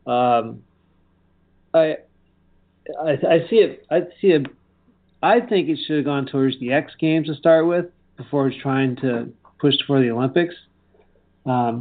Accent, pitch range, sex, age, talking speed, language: American, 115-150 Hz, male, 40-59, 160 wpm, English